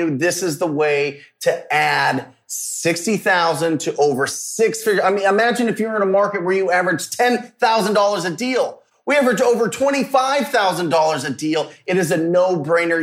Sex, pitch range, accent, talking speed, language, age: male, 155-195 Hz, American, 160 wpm, English, 30-49